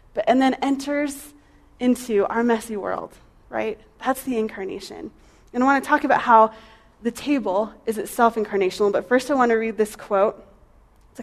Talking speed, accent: 170 wpm, American